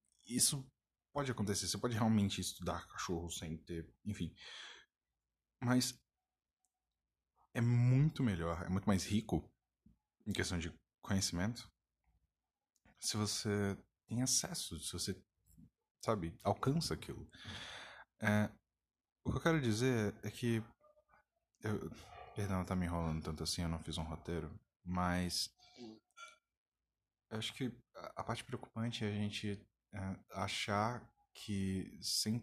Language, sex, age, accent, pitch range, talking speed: Portuguese, male, 20-39, Brazilian, 85-115 Hz, 120 wpm